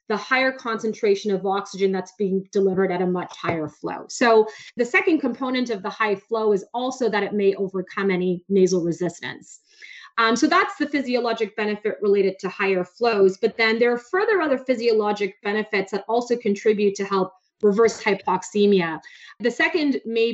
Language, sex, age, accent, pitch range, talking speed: English, female, 30-49, American, 195-250 Hz, 170 wpm